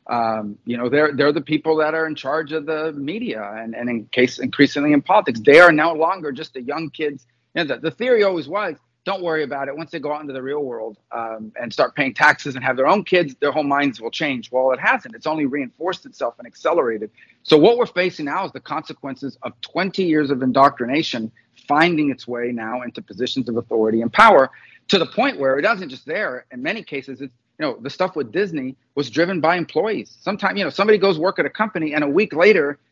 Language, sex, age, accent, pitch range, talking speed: English, male, 40-59, American, 125-160 Hz, 240 wpm